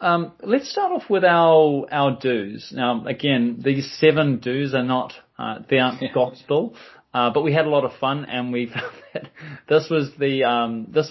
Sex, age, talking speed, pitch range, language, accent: male, 20-39, 195 wpm, 115-150 Hz, English, Australian